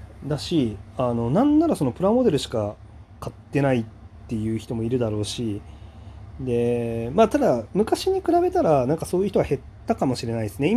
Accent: native